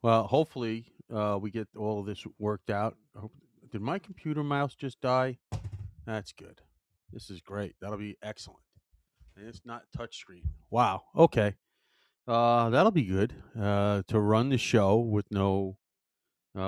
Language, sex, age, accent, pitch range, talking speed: English, male, 40-59, American, 100-120 Hz, 150 wpm